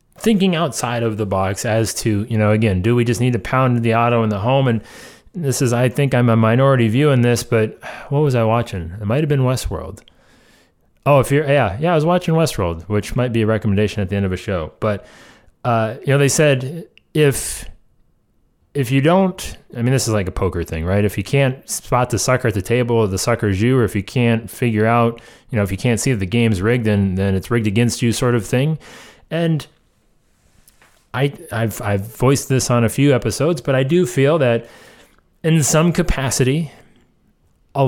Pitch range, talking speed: 110-135 Hz, 215 wpm